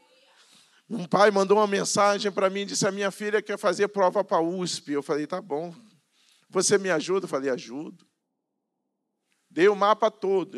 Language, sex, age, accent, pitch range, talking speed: Portuguese, male, 50-69, Brazilian, 160-215 Hz, 175 wpm